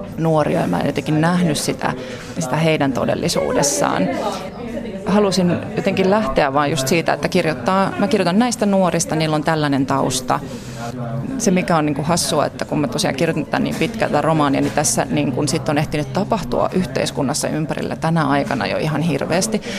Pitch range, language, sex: 150-185 Hz, Finnish, female